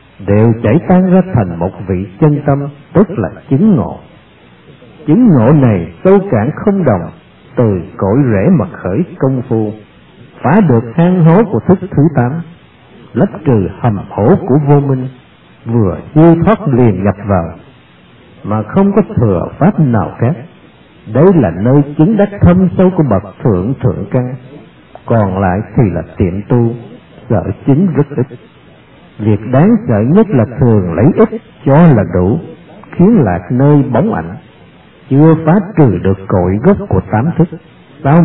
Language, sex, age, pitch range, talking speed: Vietnamese, male, 50-69, 105-165 Hz, 160 wpm